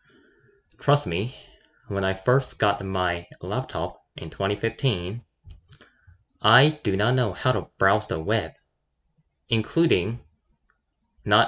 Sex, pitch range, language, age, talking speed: male, 90-120 Hz, English, 10-29, 110 wpm